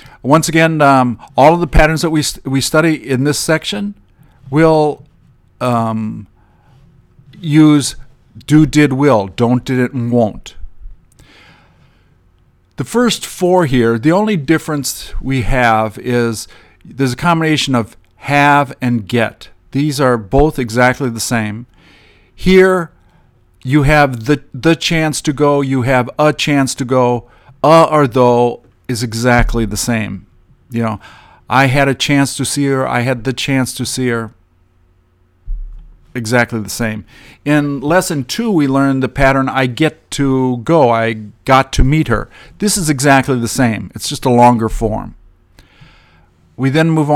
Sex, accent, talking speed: male, American, 150 wpm